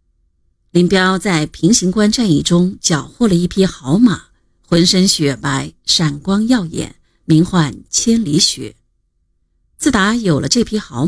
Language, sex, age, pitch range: Chinese, female, 50-69, 155-210 Hz